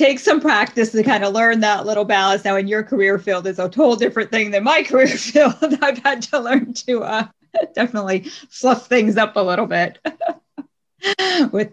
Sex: female